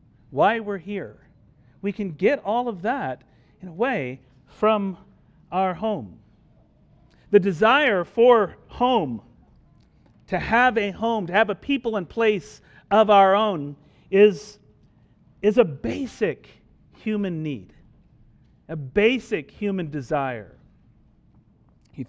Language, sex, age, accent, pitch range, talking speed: English, male, 40-59, American, 150-205 Hz, 115 wpm